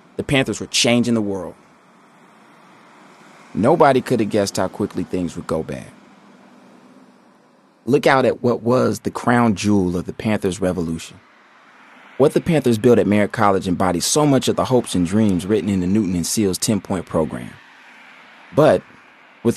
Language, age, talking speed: English, 30-49, 165 wpm